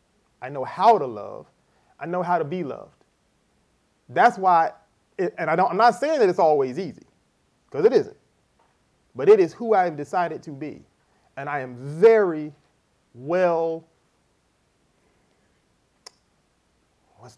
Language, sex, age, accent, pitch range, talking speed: English, male, 30-49, American, 135-195 Hz, 140 wpm